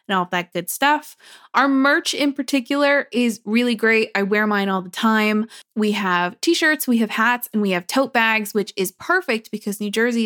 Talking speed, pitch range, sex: 205 wpm, 195-280 Hz, female